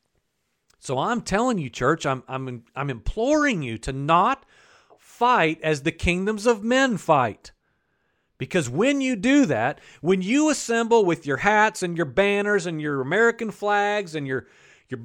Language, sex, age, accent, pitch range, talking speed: English, male, 40-59, American, 160-230 Hz, 160 wpm